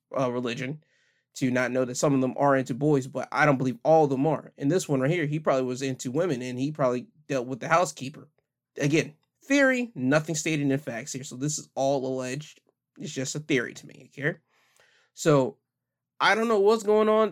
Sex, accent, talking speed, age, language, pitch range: male, American, 220 wpm, 20-39, English, 125-155 Hz